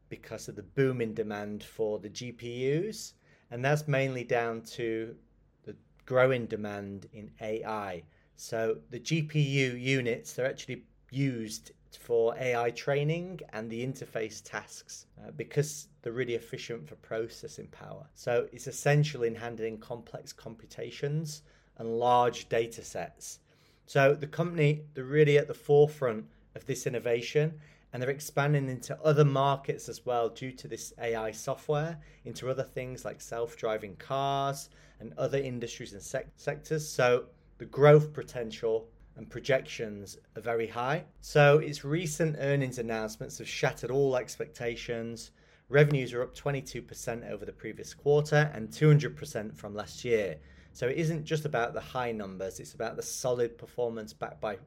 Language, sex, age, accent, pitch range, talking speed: English, male, 30-49, British, 115-145 Hz, 145 wpm